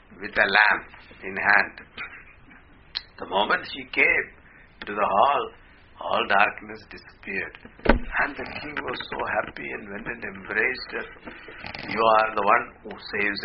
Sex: male